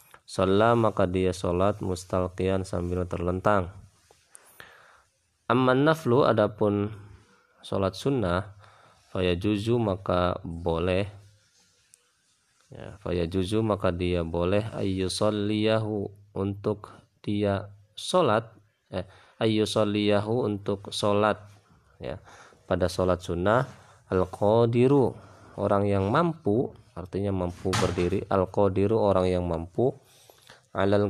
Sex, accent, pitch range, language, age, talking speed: male, native, 90-105 Hz, Indonesian, 20-39, 85 wpm